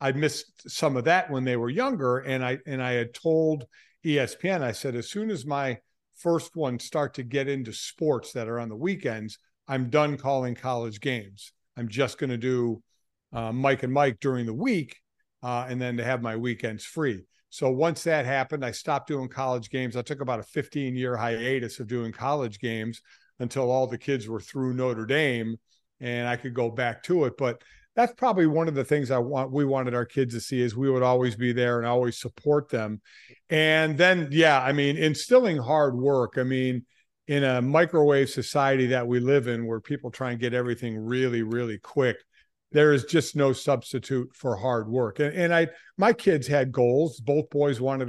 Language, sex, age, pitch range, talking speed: English, male, 50-69, 120-150 Hz, 205 wpm